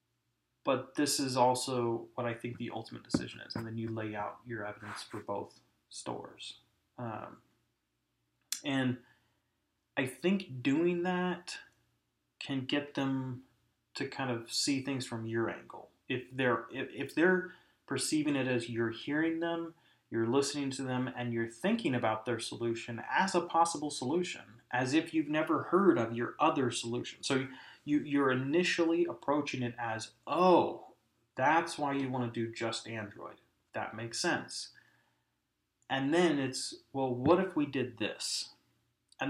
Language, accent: English, American